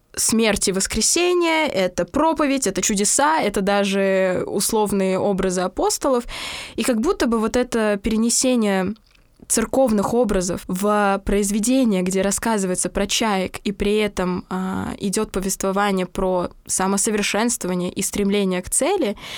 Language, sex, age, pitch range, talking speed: Russian, female, 20-39, 190-230 Hz, 125 wpm